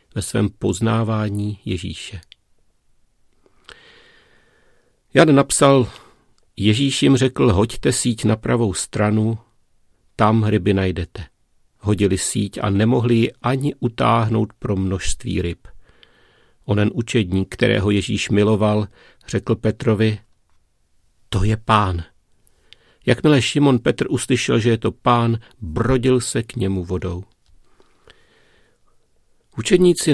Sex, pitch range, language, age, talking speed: male, 100-120 Hz, Czech, 50-69, 100 wpm